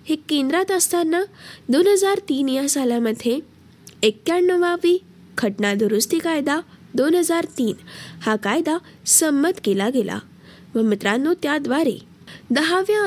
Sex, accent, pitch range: female, native, 220-335 Hz